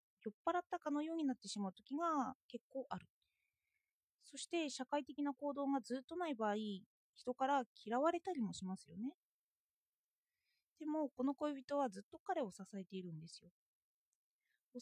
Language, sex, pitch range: Japanese, female, 220-315 Hz